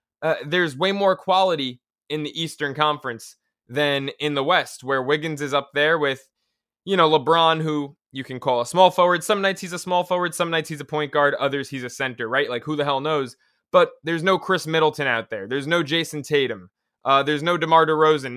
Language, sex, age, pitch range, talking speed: English, male, 20-39, 135-170 Hz, 220 wpm